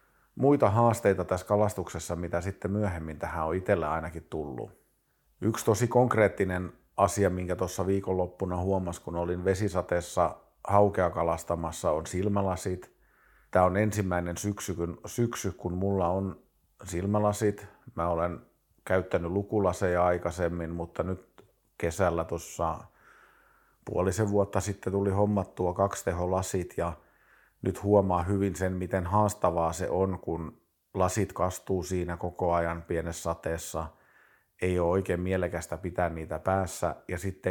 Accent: native